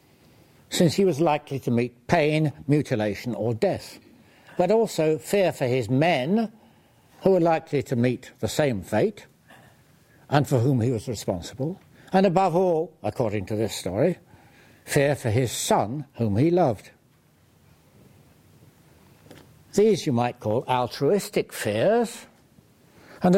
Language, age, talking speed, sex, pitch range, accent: English, 60-79, 130 wpm, male, 120-165 Hz, British